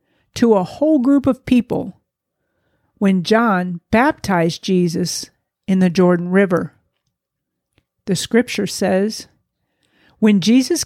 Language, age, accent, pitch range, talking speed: English, 50-69, American, 185-235 Hz, 105 wpm